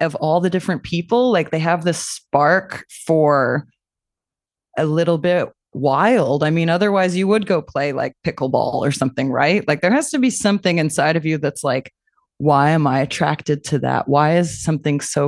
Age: 20-39